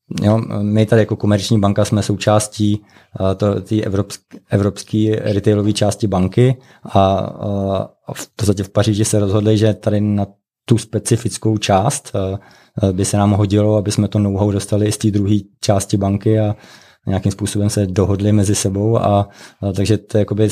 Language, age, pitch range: Czech, 20-39, 100-110 Hz